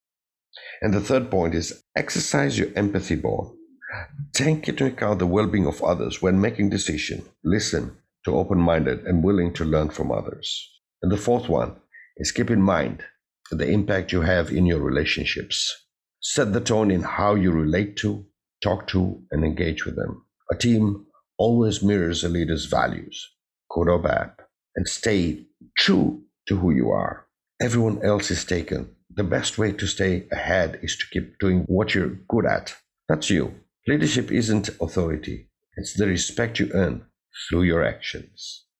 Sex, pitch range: male, 90-110 Hz